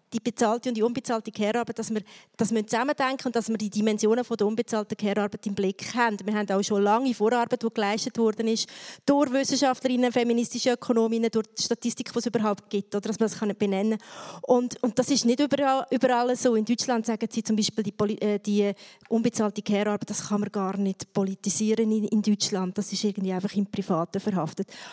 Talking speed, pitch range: 210 wpm, 215-255 Hz